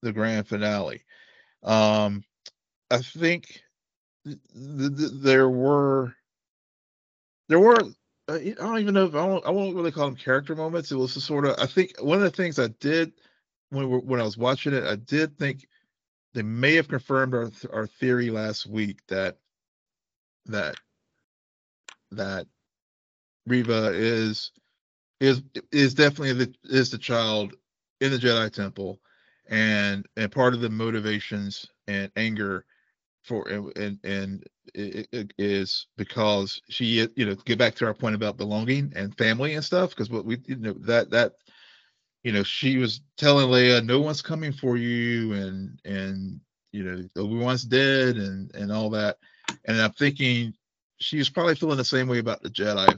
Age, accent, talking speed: 50-69, American, 160 wpm